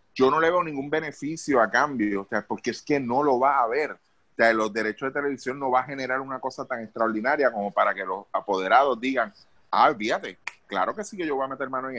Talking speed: 250 wpm